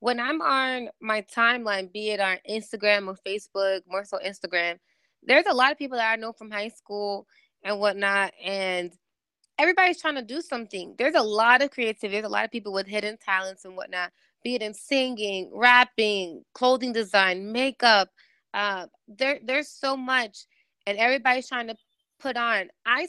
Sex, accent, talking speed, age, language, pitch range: female, American, 175 wpm, 20-39, English, 200-250 Hz